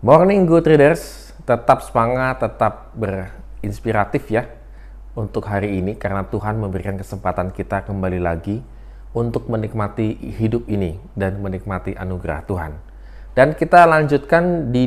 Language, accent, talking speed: Indonesian, native, 120 wpm